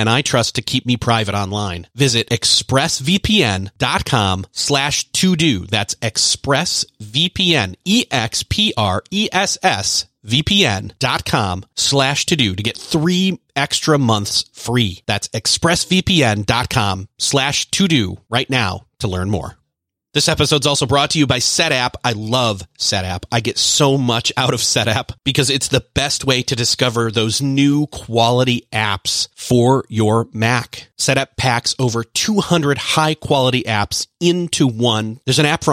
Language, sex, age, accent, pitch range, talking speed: English, male, 30-49, American, 115-145 Hz, 135 wpm